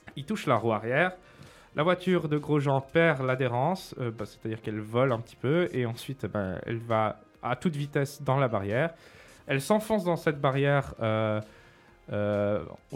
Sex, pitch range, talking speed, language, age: male, 115-155 Hz, 170 wpm, French, 20-39